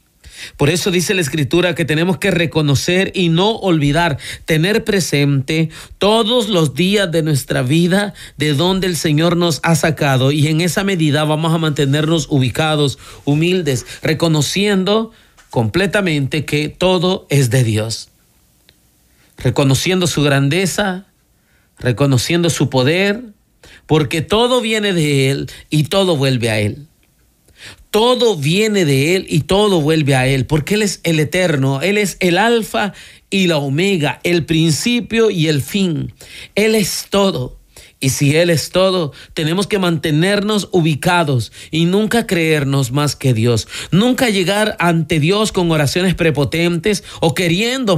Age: 40-59